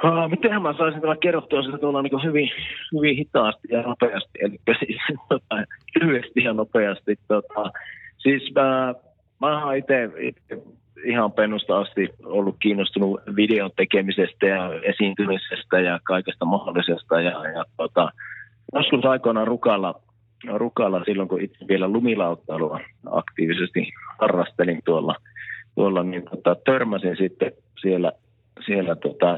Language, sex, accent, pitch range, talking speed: Finnish, male, native, 95-125 Hz, 125 wpm